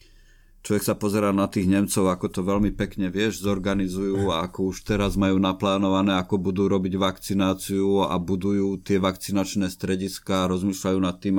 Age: 50-69